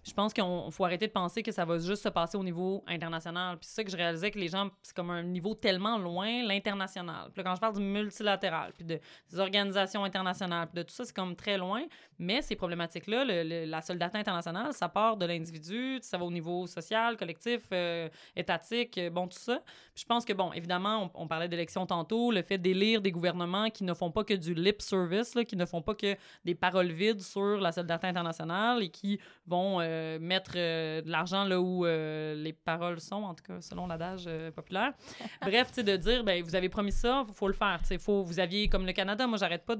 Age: 20-39